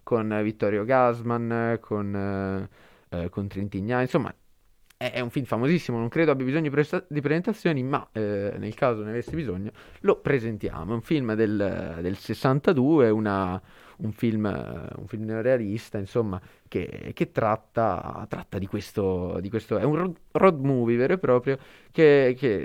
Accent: native